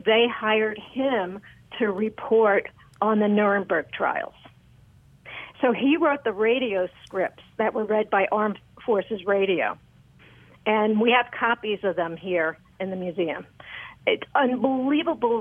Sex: female